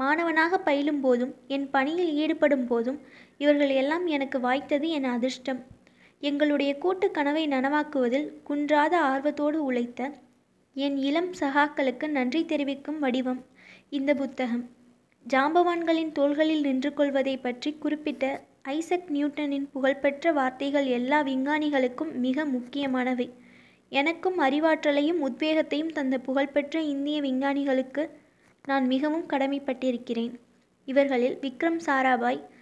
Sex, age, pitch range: female, 20-39, 265-300 Hz